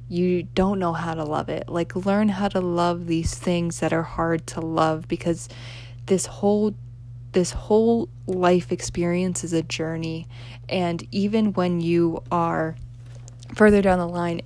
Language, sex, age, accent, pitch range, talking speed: English, female, 20-39, American, 120-175 Hz, 160 wpm